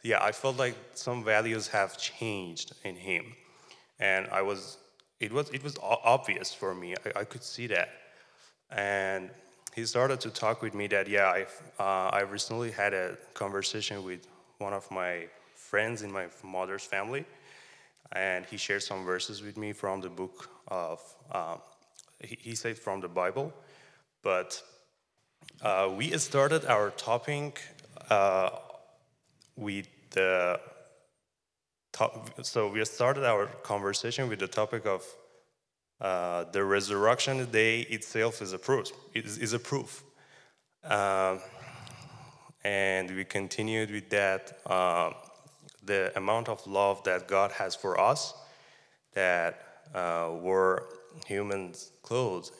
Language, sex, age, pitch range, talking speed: English, male, 20-39, 95-115 Hz, 130 wpm